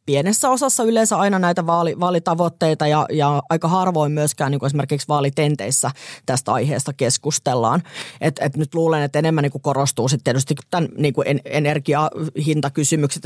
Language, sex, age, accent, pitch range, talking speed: Finnish, female, 20-39, native, 145-180 Hz, 130 wpm